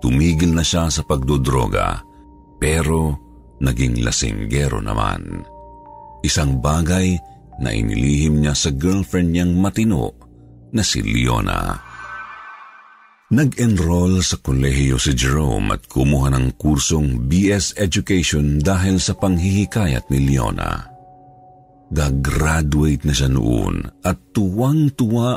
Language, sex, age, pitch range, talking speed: Filipino, male, 50-69, 70-95 Hz, 100 wpm